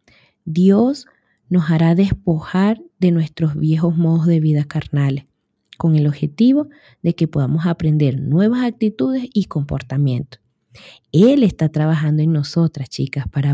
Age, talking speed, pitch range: 20-39, 130 wpm, 150-190 Hz